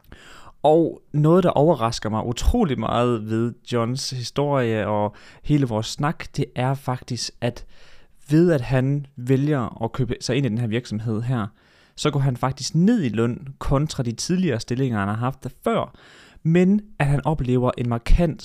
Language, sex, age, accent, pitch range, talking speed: Danish, male, 20-39, native, 115-150 Hz, 170 wpm